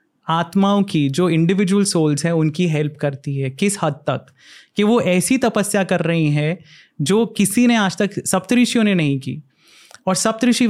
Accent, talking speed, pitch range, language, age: native, 175 wpm, 155-200 Hz, Hindi, 30-49